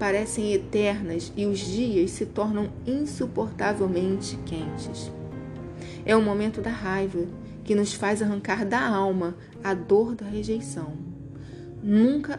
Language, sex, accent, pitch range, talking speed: Portuguese, female, Brazilian, 175-225 Hz, 120 wpm